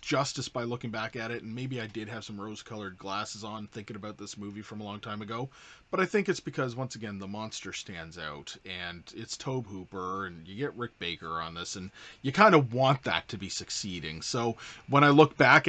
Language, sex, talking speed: English, male, 235 wpm